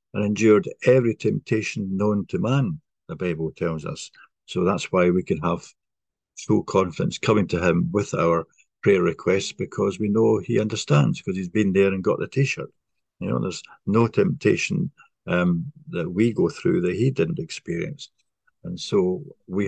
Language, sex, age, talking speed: English, male, 60-79, 170 wpm